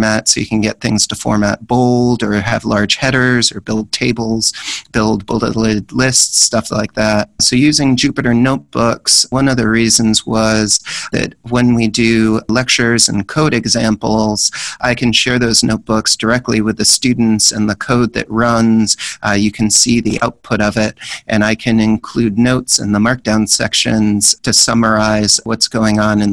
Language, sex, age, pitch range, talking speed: English, male, 40-59, 110-120 Hz, 170 wpm